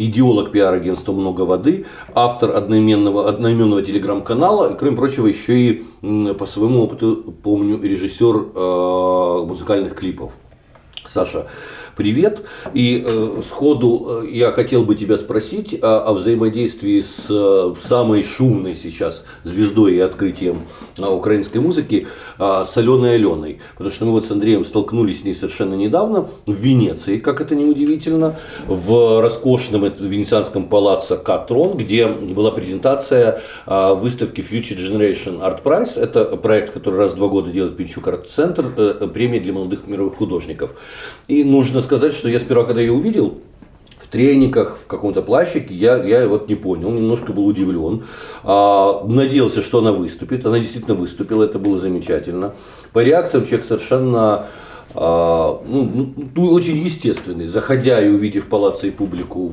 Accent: native